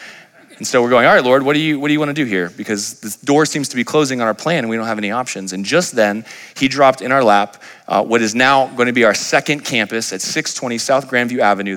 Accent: American